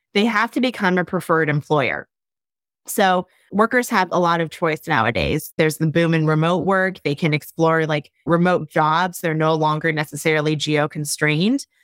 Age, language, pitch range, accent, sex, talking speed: 20-39, English, 160-195 Hz, American, female, 160 wpm